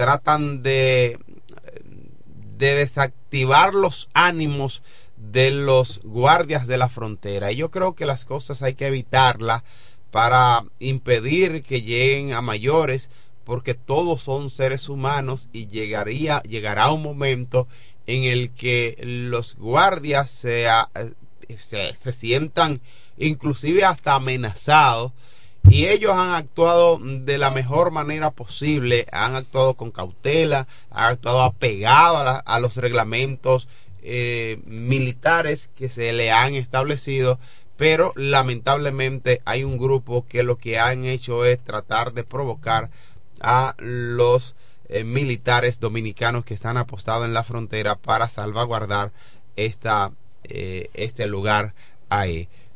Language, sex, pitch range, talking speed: Spanish, male, 115-135 Hz, 120 wpm